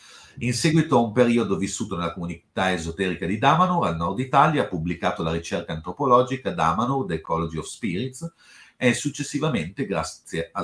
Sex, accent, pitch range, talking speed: male, native, 85-125 Hz, 160 wpm